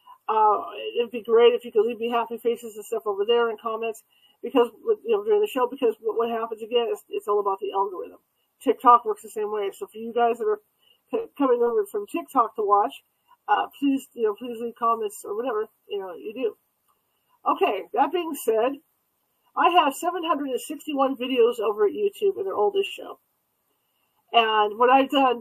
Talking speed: 195 wpm